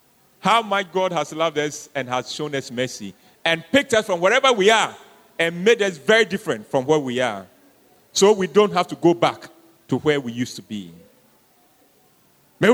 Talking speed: 195 wpm